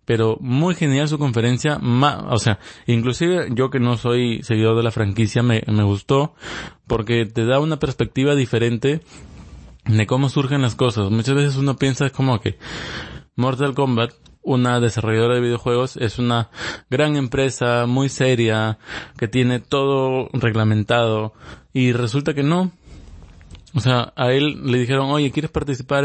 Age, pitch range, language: 20-39, 115-140 Hz, Spanish